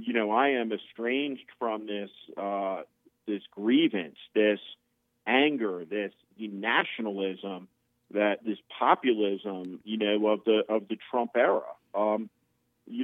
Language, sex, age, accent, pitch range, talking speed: English, male, 50-69, American, 110-135 Hz, 125 wpm